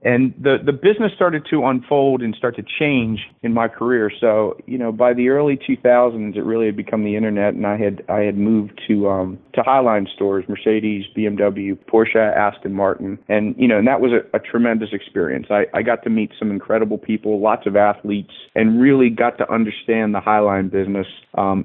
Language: English